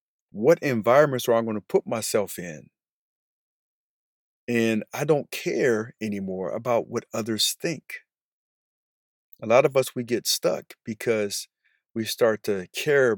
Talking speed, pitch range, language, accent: 135 wpm, 110-130 Hz, English, American